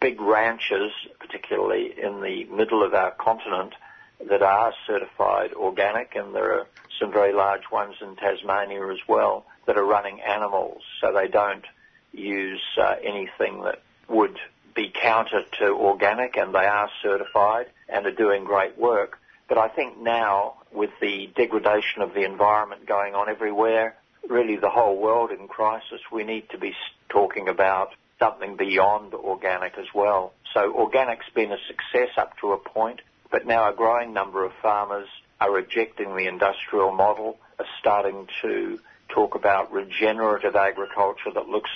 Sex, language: male, English